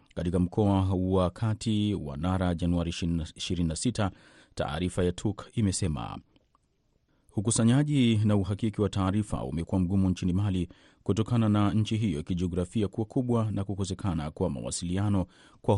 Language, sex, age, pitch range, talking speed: Swahili, male, 30-49, 90-105 Hz, 120 wpm